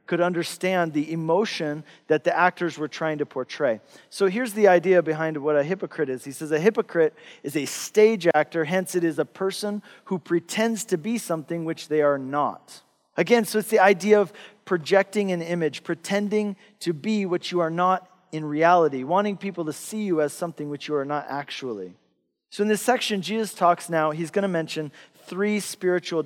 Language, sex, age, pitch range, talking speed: English, male, 40-59, 155-205 Hz, 195 wpm